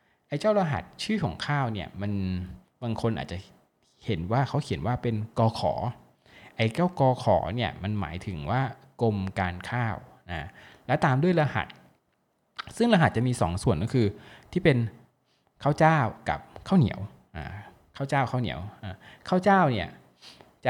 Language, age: Thai, 20-39